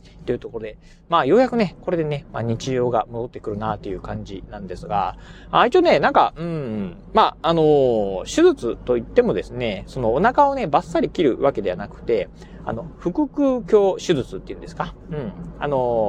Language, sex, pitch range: Japanese, male, 140-195 Hz